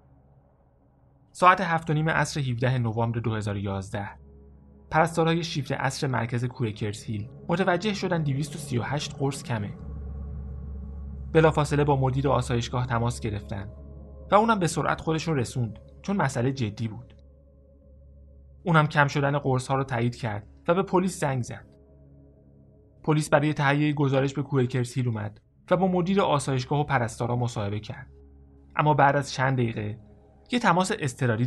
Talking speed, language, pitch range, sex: 130 wpm, Persian, 105-145 Hz, male